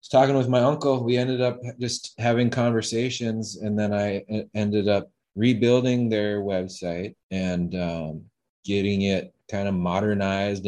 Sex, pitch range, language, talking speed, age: male, 90-110 Hz, English, 140 wpm, 30-49